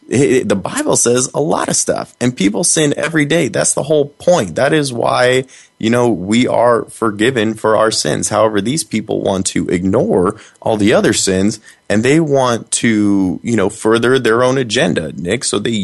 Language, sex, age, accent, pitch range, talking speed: English, male, 20-39, American, 100-130 Hz, 195 wpm